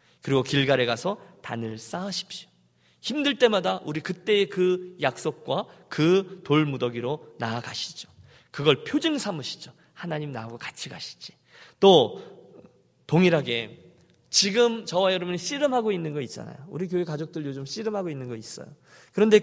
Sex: male